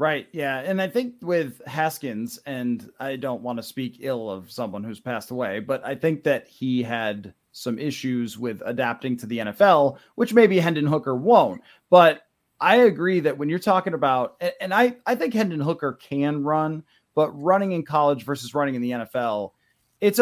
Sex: male